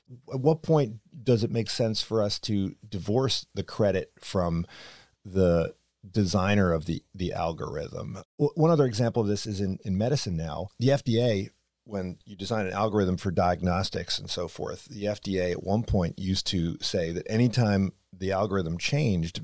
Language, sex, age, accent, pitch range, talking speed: English, male, 40-59, American, 90-125 Hz, 170 wpm